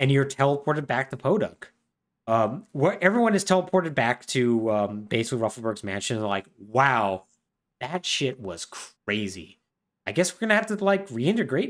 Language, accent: English, American